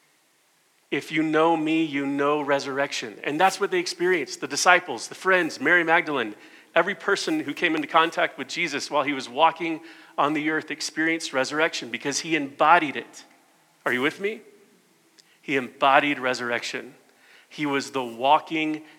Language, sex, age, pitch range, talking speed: English, male, 40-59, 125-160 Hz, 160 wpm